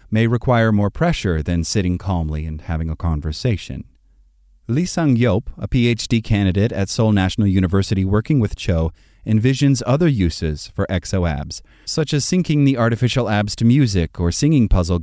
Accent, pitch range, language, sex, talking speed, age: American, 95-120 Hz, English, male, 155 wpm, 30-49